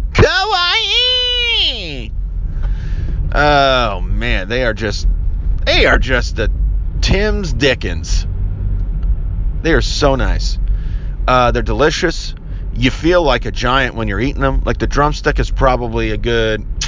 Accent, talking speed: American, 120 wpm